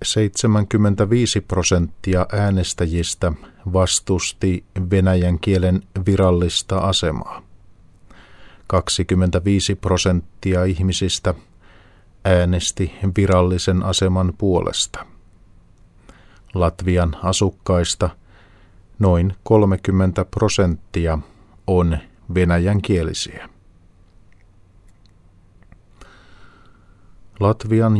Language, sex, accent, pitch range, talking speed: Finnish, male, native, 90-100 Hz, 50 wpm